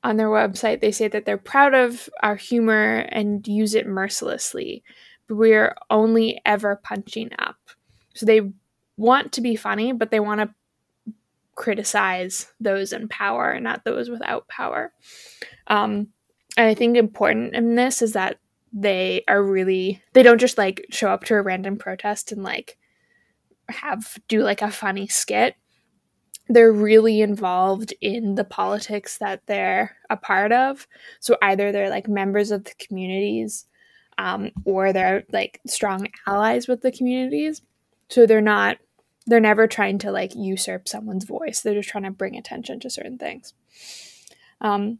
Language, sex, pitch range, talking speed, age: English, female, 200-230 Hz, 155 wpm, 20-39